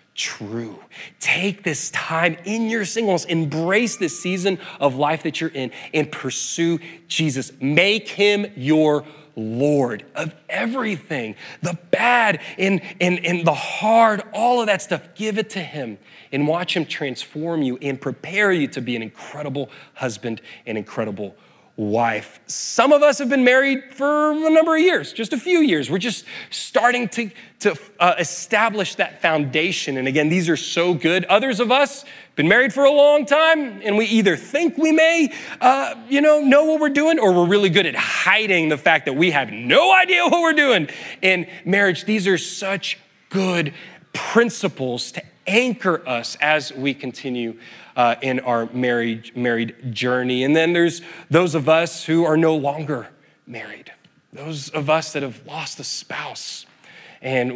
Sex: male